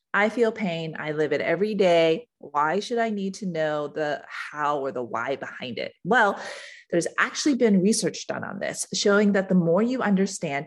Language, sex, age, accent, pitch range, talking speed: English, female, 30-49, American, 170-225 Hz, 195 wpm